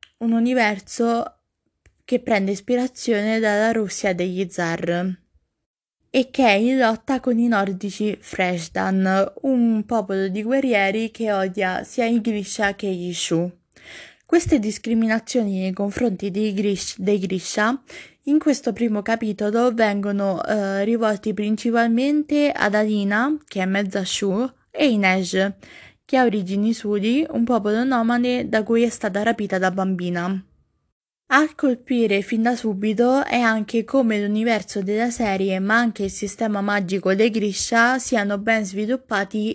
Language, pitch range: Italian, 200-235 Hz